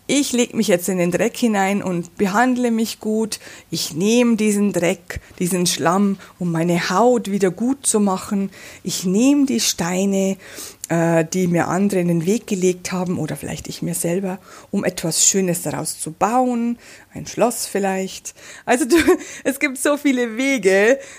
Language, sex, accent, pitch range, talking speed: German, female, German, 185-230 Hz, 165 wpm